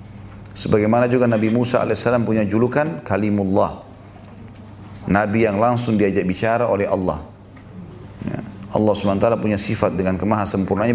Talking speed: 125 wpm